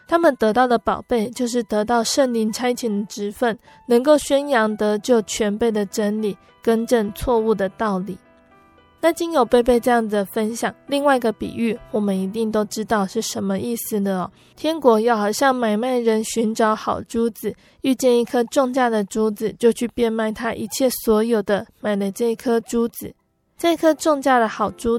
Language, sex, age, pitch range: Chinese, female, 20-39, 210-245 Hz